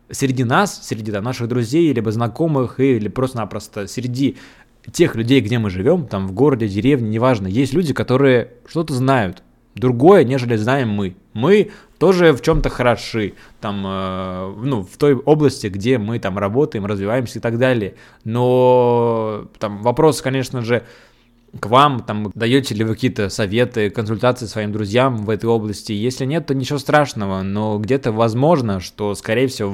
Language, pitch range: Russian, 110-140 Hz